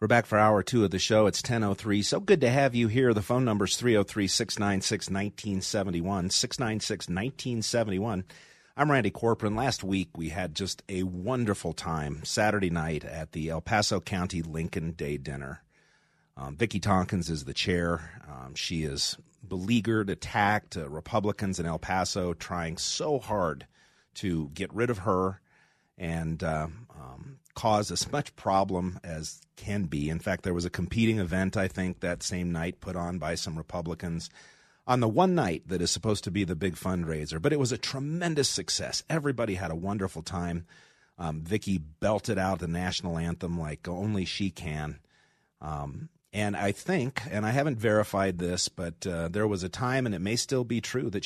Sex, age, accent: male, 40-59, American